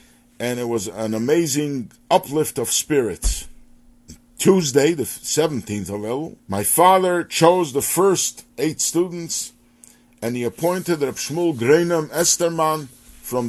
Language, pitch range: English, 120-170 Hz